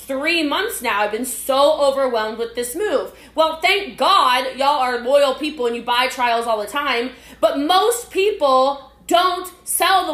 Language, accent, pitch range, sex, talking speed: English, American, 235-295 Hz, female, 180 wpm